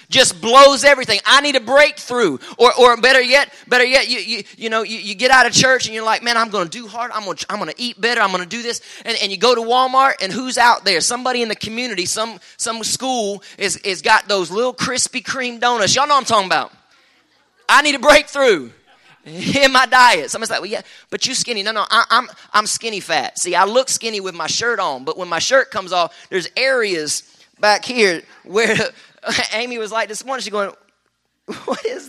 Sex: male